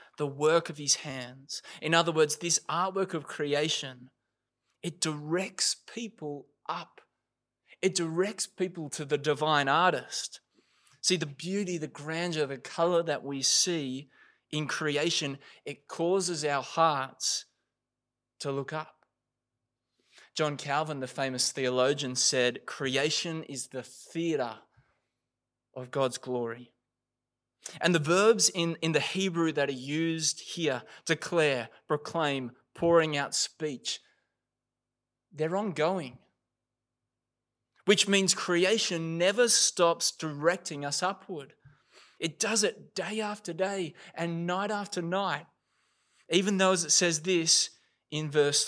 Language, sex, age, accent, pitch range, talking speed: English, male, 20-39, Australian, 135-175 Hz, 120 wpm